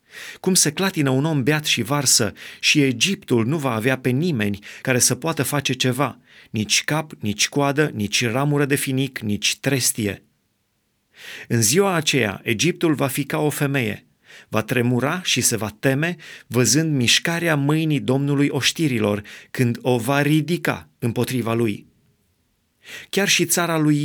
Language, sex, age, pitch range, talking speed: Romanian, male, 30-49, 115-145 Hz, 150 wpm